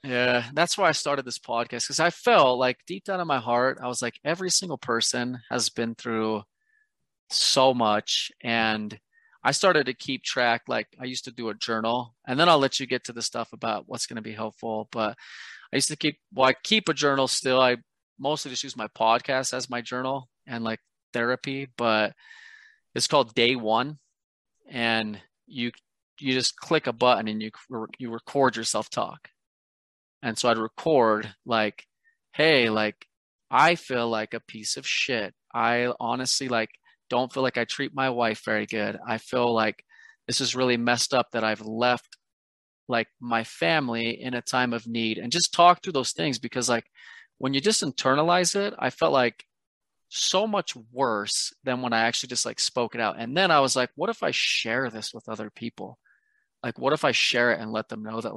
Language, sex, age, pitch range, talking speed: English, male, 30-49, 115-140 Hz, 200 wpm